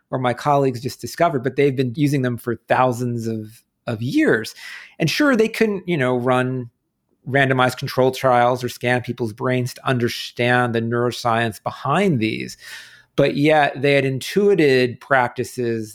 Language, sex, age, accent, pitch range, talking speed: English, male, 40-59, American, 120-140 Hz, 155 wpm